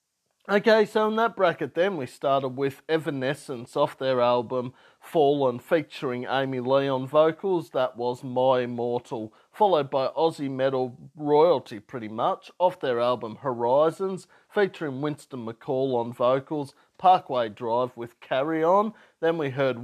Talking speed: 140 wpm